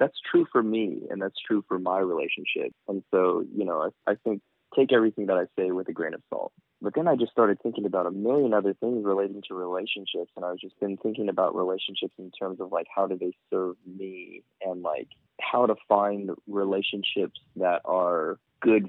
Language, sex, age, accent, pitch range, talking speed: English, male, 20-39, American, 95-110 Hz, 210 wpm